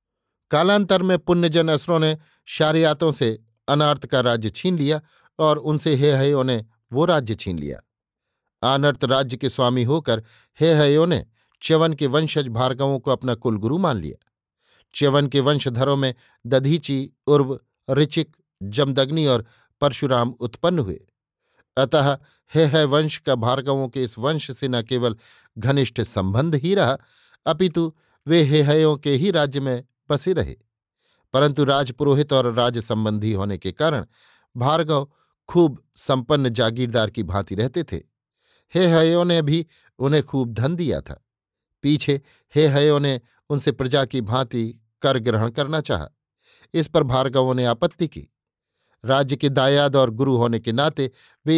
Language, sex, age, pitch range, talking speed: Hindi, male, 50-69, 120-150 Hz, 150 wpm